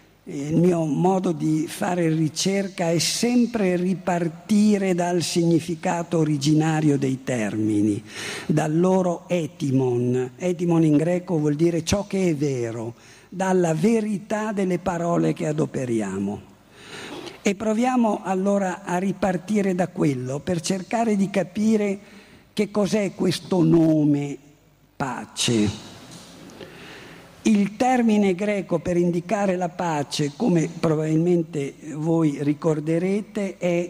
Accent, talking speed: native, 105 wpm